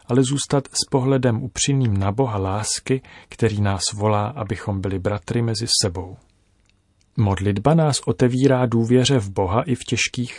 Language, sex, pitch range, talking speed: Czech, male, 100-125 Hz, 145 wpm